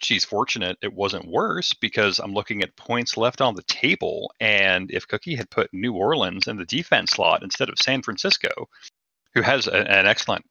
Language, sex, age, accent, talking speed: English, male, 30-49, American, 195 wpm